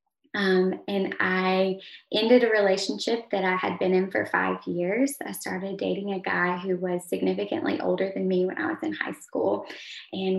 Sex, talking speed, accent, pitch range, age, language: female, 185 wpm, American, 185-200 Hz, 20-39, English